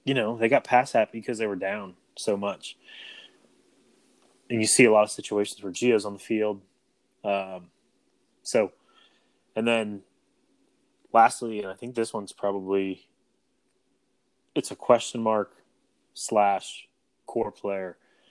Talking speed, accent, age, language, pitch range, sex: 140 wpm, American, 20-39, English, 105-125 Hz, male